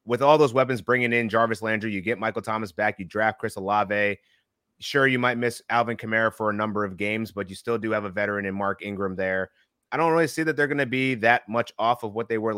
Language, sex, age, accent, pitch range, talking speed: English, male, 30-49, American, 105-120 Hz, 265 wpm